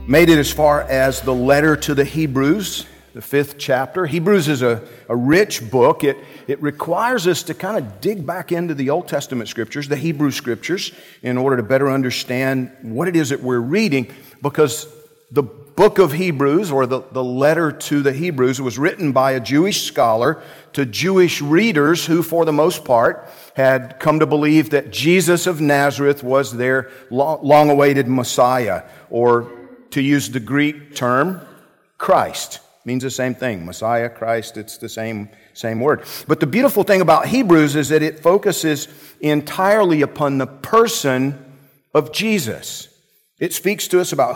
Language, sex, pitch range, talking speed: English, male, 130-160 Hz, 170 wpm